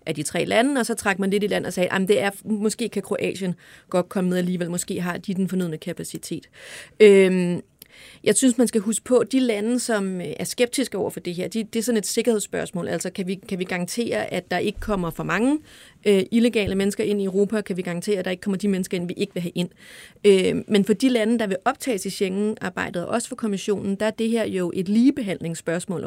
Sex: female